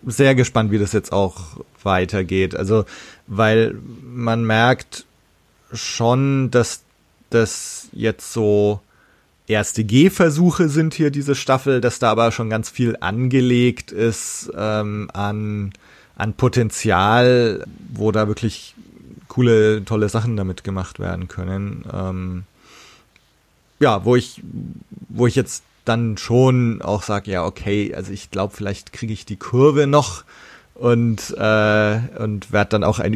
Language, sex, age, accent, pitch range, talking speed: German, male, 30-49, German, 95-120 Hz, 130 wpm